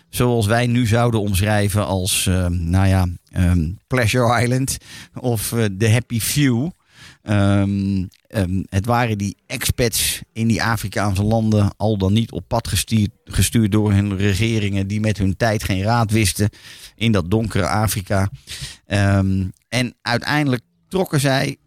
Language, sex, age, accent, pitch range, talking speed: Dutch, male, 50-69, Dutch, 100-120 Hz, 135 wpm